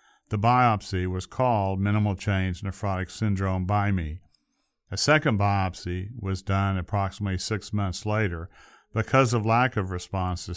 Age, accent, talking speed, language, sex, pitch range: 50-69, American, 140 wpm, English, male, 95-110 Hz